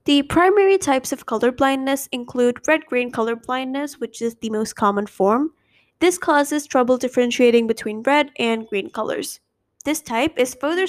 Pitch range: 235-290 Hz